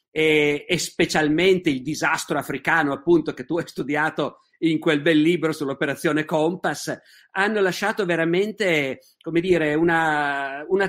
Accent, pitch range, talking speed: native, 150-195 Hz, 125 wpm